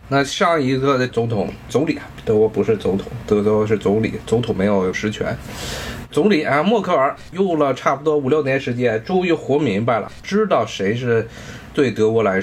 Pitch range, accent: 115-170 Hz, native